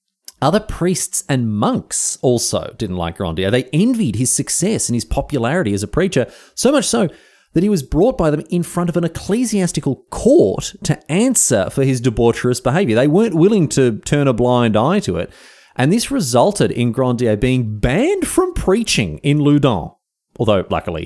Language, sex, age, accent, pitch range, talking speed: English, male, 30-49, Australian, 115-190 Hz, 175 wpm